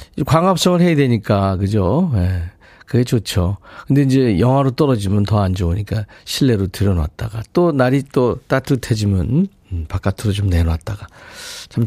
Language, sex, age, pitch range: Korean, male, 40-59, 110-155 Hz